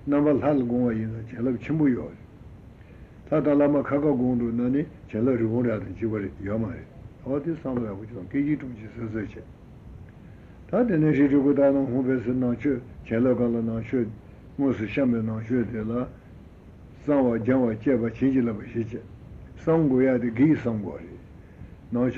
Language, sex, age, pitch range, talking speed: Italian, male, 60-79, 110-130 Hz, 40 wpm